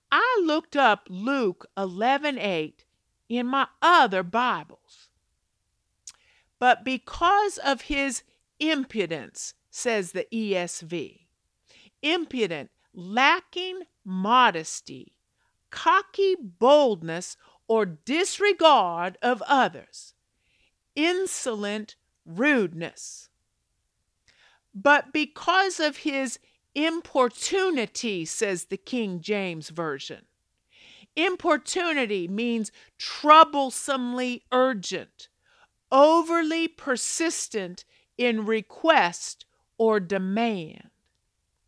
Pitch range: 210-320 Hz